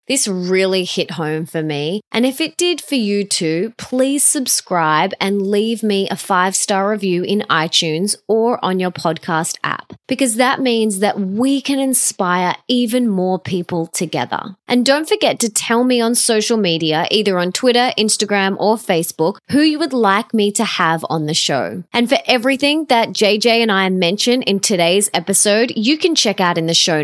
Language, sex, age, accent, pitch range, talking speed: English, female, 20-39, Australian, 175-240 Hz, 180 wpm